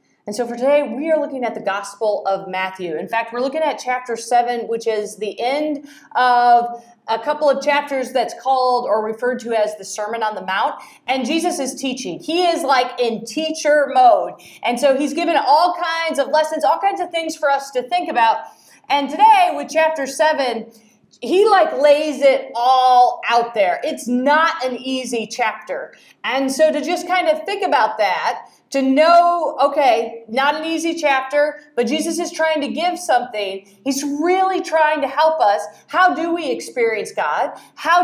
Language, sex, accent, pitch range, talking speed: English, female, American, 240-310 Hz, 185 wpm